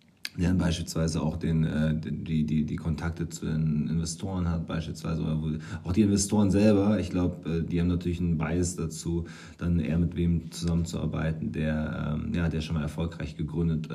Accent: German